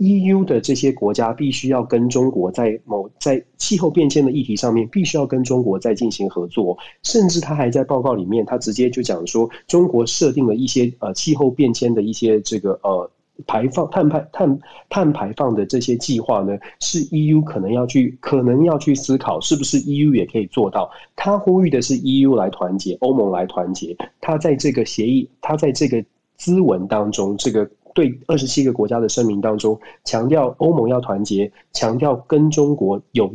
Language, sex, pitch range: Chinese, male, 110-145 Hz